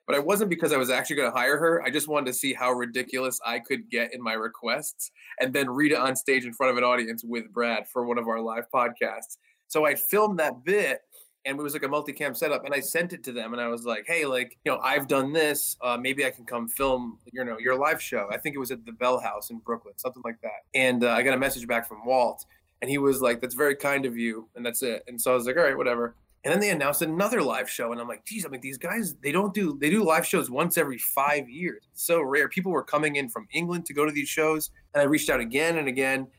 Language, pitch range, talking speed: English, 120-150 Hz, 280 wpm